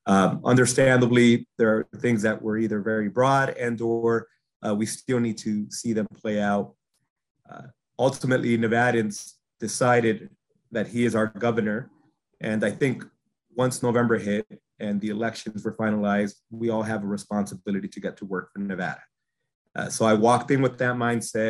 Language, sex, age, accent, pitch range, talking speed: English, male, 30-49, American, 110-130 Hz, 165 wpm